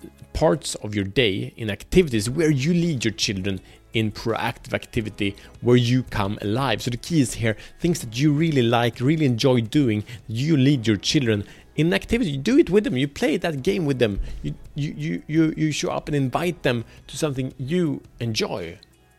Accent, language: Norwegian, Swedish